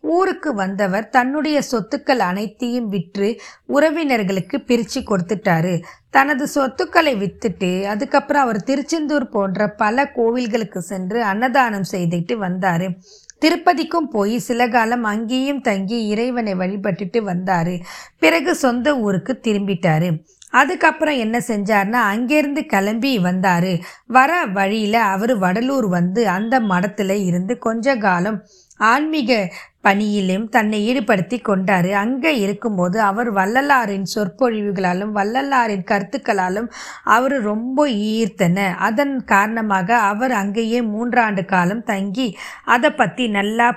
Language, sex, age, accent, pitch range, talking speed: Tamil, female, 20-39, native, 195-255 Hz, 105 wpm